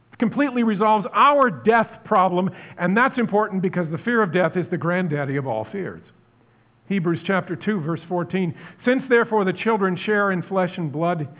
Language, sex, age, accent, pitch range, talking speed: English, male, 50-69, American, 135-185 Hz, 175 wpm